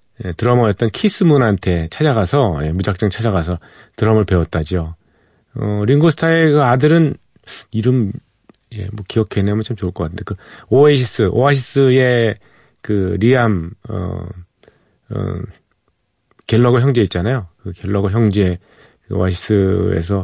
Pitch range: 95-125 Hz